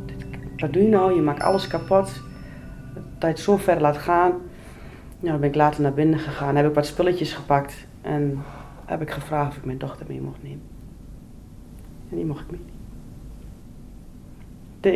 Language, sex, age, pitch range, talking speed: Dutch, female, 30-49, 155-185 Hz, 180 wpm